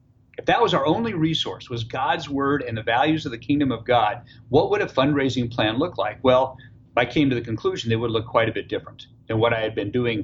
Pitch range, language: 115-145 Hz, English